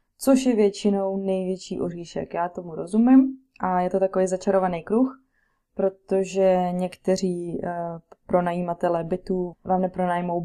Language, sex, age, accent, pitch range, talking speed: Czech, female, 20-39, native, 180-205 Hz, 115 wpm